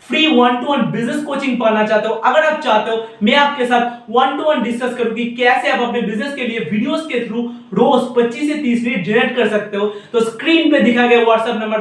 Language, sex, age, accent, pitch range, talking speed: Hindi, male, 50-69, native, 220-270 Hz, 110 wpm